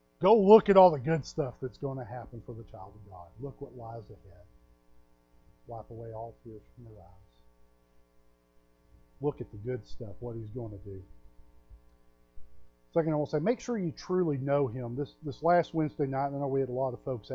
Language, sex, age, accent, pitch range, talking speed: English, male, 40-59, American, 95-145 Hz, 210 wpm